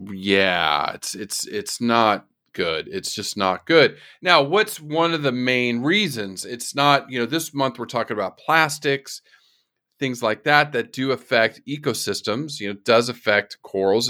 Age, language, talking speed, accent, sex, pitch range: 40-59, English, 170 wpm, American, male, 100-130 Hz